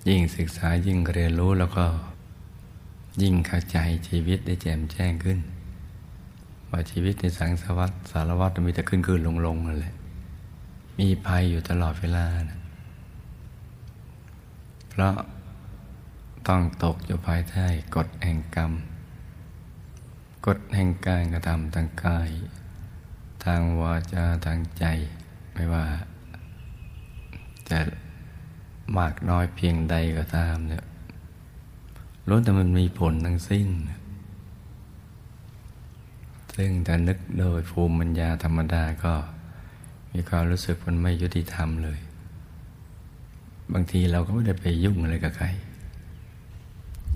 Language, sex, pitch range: Thai, male, 85-95 Hz